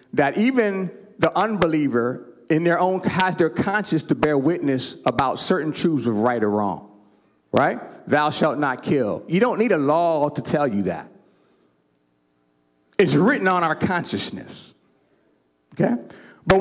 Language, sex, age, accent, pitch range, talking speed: English, male, 40-59, American, 145-205 Hz, 150 wpm